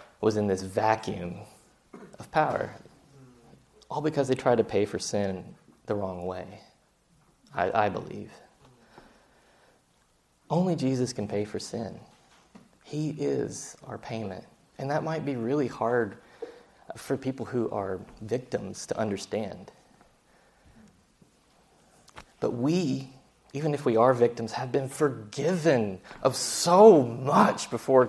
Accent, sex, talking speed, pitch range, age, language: American, male, 120 wpm, 110-155 Hz, 20-39, English